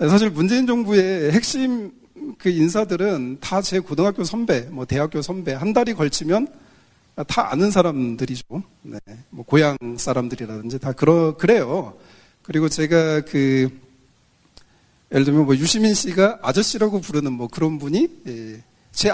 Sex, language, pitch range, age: male, Korean, 135-195 Hz, 40-59